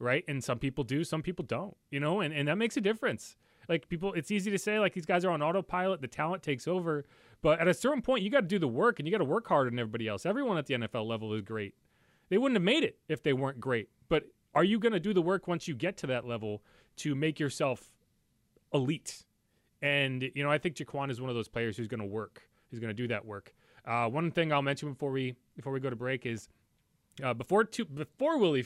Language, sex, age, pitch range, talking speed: English, male, 30-49, 110-155 Hz, 260 wpm